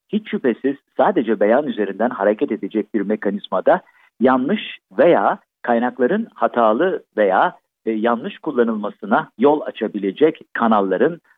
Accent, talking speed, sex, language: native, 100 wpm, male, Turkish